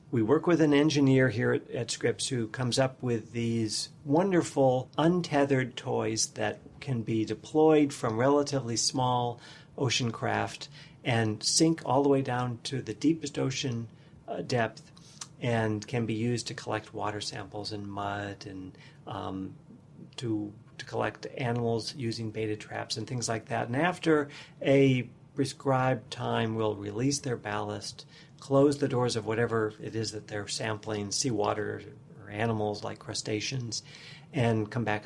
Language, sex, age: English, male, 50-69